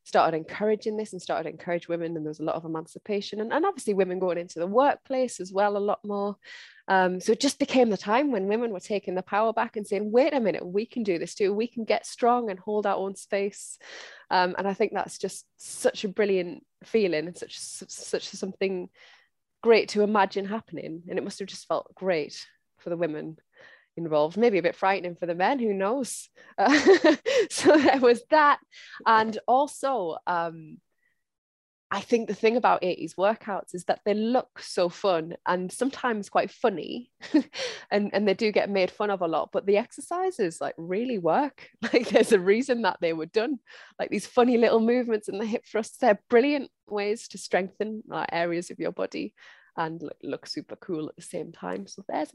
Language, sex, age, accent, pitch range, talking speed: English, female, 20-39, British, 185-240 Hz, 205 wpm